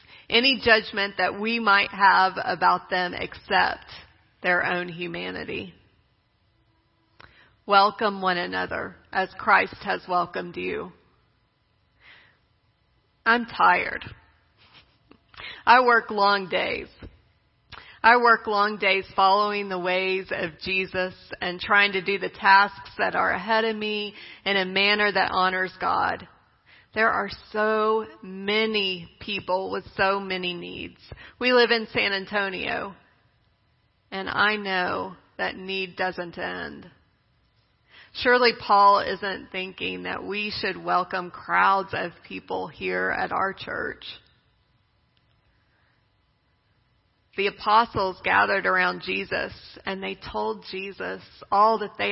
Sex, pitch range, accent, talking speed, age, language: female, 175-210 Hz, American, 115 wpm, 40-59, English